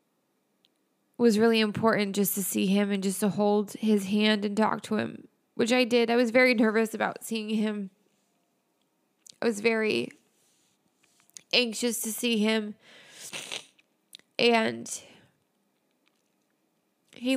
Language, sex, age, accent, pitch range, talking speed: English, female, 20-39, American, 220-260 Hz, 125 wpm